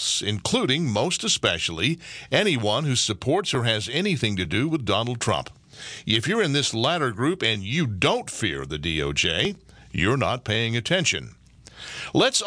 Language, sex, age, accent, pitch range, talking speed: English, male, 50-69, American, 105-155 Hz, 150 wpm